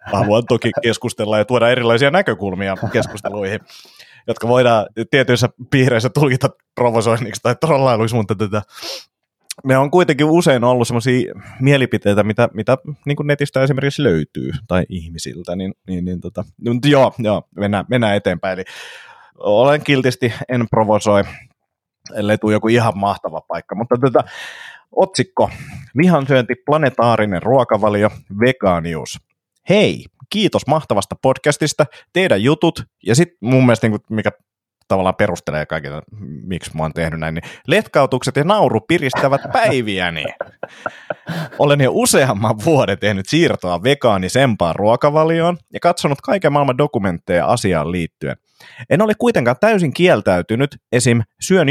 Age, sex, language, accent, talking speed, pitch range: 30-49, male, Finnish, native, 125 wpm, 105-145 Hz